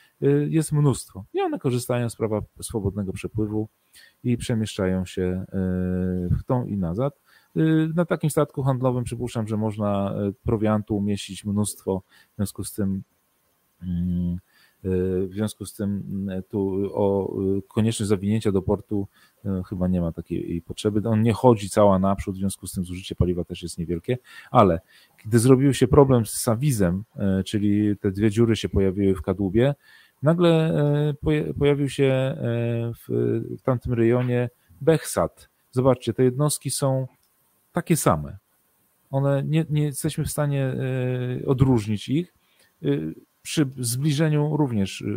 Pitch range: 95-135 Hz